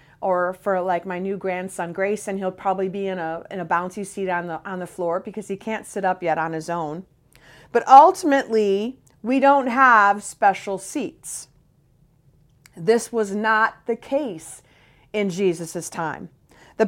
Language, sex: English, female